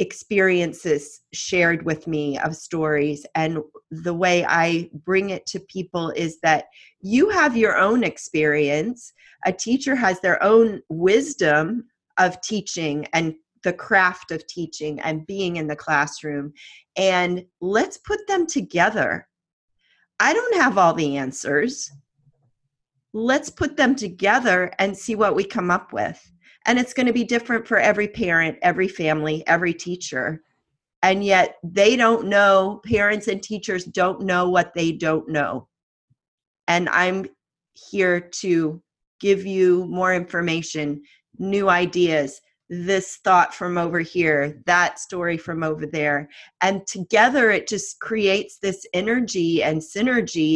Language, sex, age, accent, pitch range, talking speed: English, female, 40-59, American, 155-200 Hz, 140 wpm